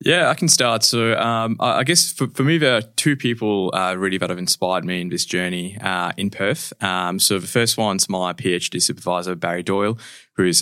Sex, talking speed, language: male, 215 wpm, English